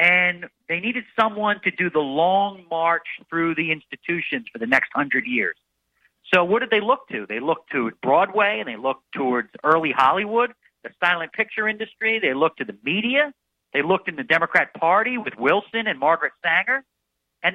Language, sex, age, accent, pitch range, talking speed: English, male, 50-69, American, 155-230 Hz, 185 wpm